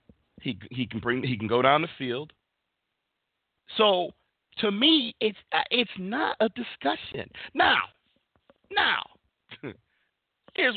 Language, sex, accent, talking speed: English, male, American, 115 wpm